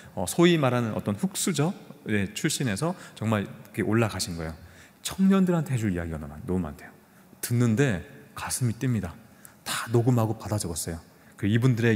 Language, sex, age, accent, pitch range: Korean, male, 30-49, native, 95-140 Hz